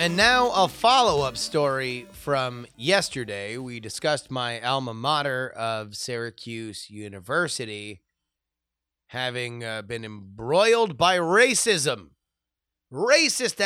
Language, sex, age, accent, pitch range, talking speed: English, male, 30-49, American, 110-160 Hz, 95 wpm